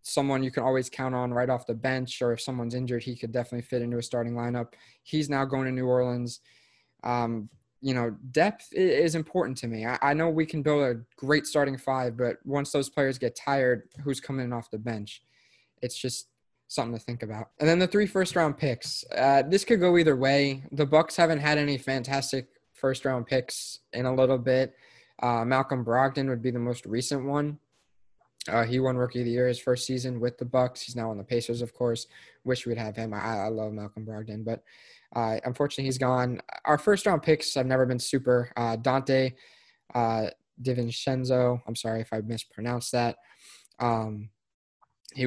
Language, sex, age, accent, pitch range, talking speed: English, male, 20-39, American, 120-140 Hz, 200 wpm